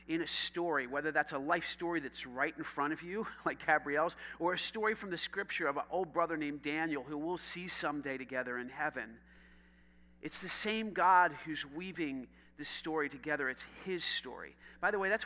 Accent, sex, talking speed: American, male, 200 wpm